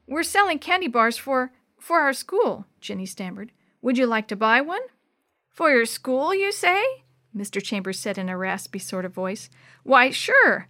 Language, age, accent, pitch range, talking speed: English, 40-59, American, 200-270 Hz, 180 wpm